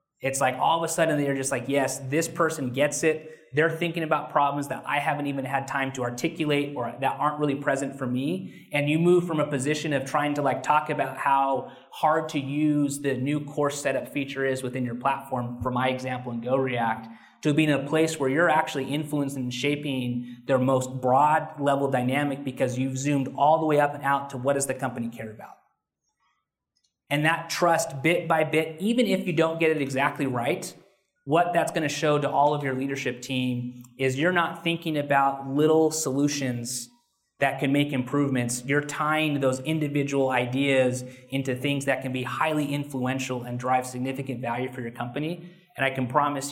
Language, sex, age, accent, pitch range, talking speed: English, male, 30-49, American, 130-150 Hz, 200 wpm